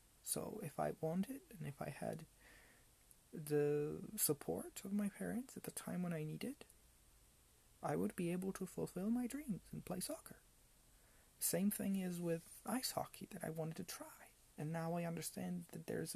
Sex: male